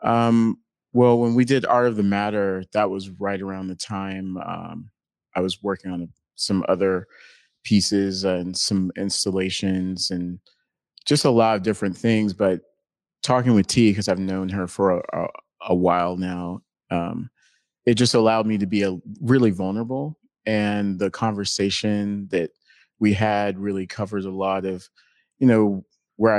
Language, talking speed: English, 160 wpm